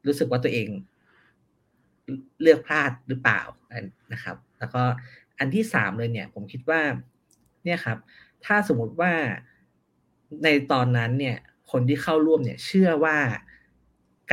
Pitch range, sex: 115-145 Hz, male